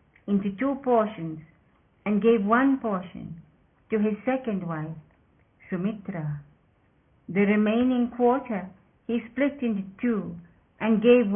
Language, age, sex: English, 50-69, female